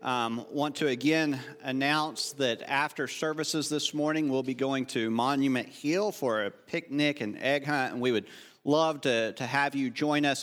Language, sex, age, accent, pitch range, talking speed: English, male, 40-59, American, 125-150 Hz, 185 wpm